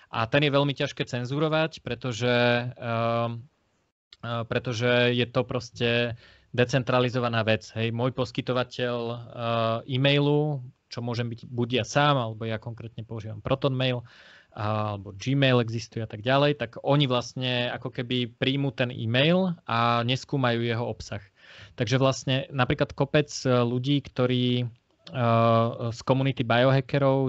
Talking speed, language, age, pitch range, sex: 120 wpm, Slovak, 20-39, 115-130 Hz, male